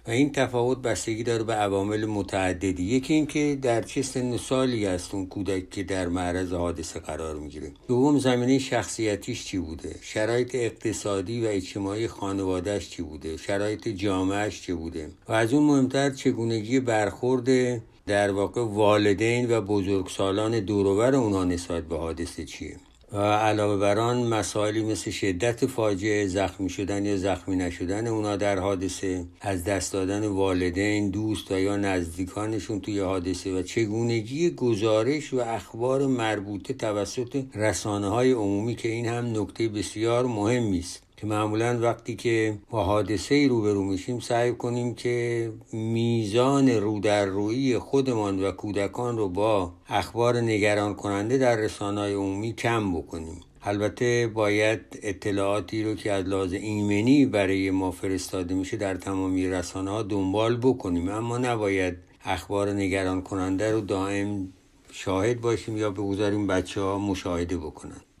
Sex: male